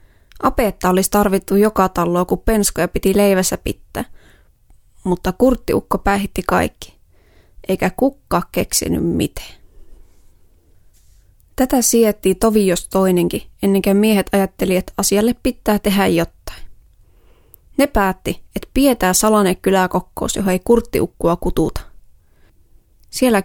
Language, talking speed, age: Finnish, 110 wpm, 20-39